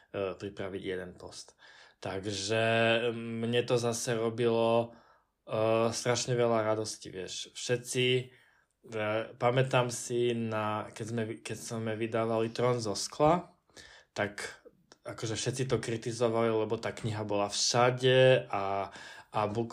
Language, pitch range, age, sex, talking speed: Slovak, 110-130 Hz, 20-39, male, 120 wpm